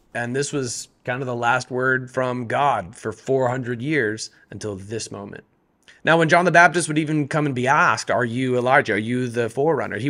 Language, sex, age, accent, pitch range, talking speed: English, male, 30-49, American, 115-140 Hz, 210 wpm